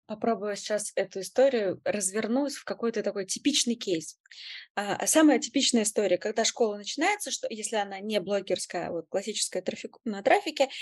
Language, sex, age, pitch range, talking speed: Russian, female, 20-39, 230-300 Hz, 150 wpm